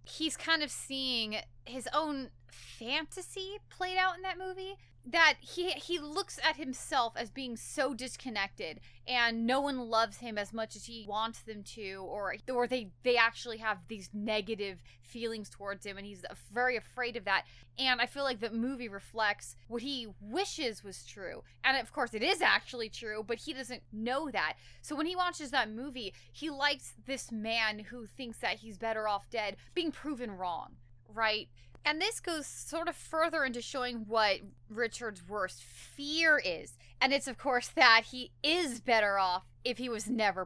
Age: 20-39